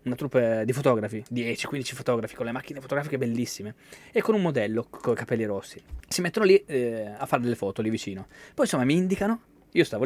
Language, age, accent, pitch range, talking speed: Italian, 20-39, native, 110-150 Hz, 215 wpm